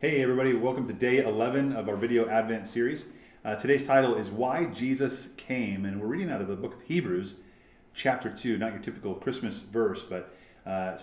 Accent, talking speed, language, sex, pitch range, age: American, 195 wpm, English, male, 95-130 Hz, 30-49